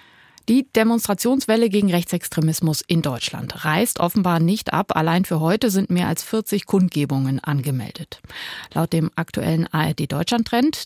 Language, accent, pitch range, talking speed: German, German, 150-190 Hz, 140 wpm